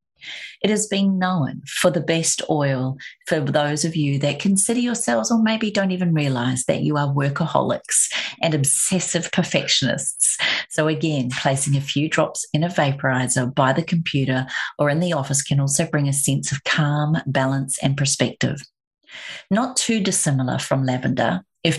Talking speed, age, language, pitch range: 160 wpm, 40-59, English, 140-165 Hz